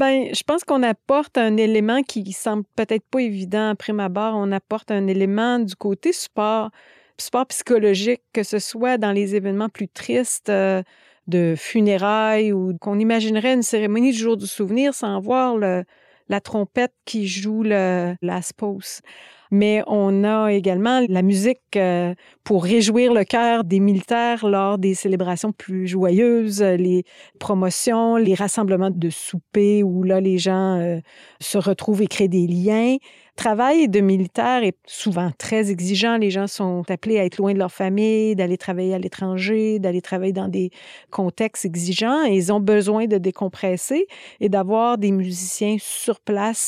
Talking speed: 160 wpm